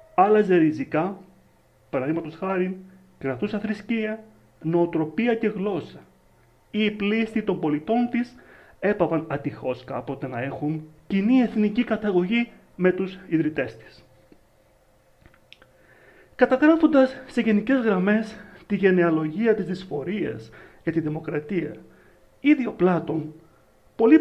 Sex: male